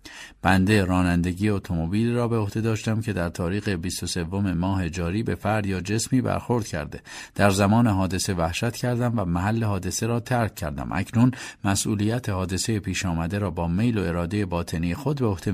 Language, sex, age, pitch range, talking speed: Persian, male, 50-69, 90-125 Hz, 170 wpm